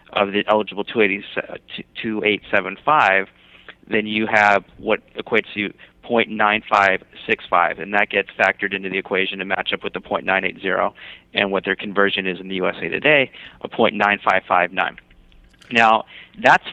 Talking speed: 135 wpm